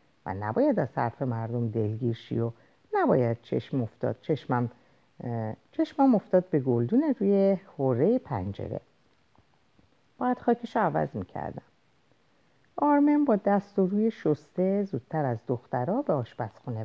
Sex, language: female, Persian